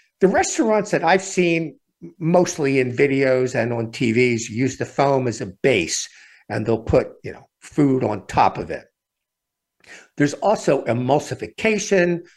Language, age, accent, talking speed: English, 50-69, American, 145 wpm